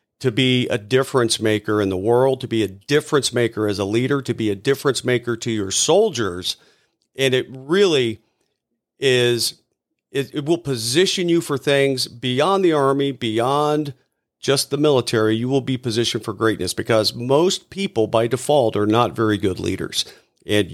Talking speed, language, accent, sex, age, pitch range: 170 wpm, English, American, male, 50-69, 115-145 Hz